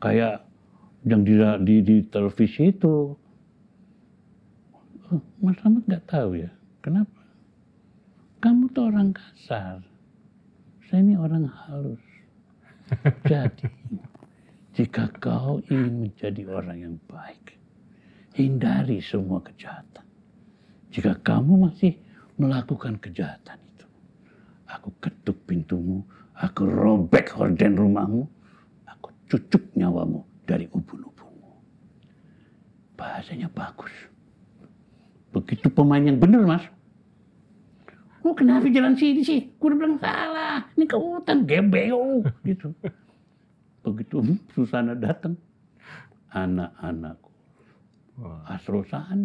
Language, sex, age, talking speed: Indonesian, male, 60-79, 90 wpm